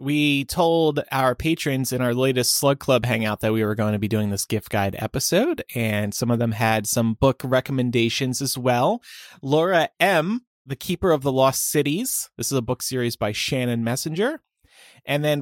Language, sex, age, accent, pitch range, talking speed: English, male, 30-49, American, 115-150 Hz, 190 wpm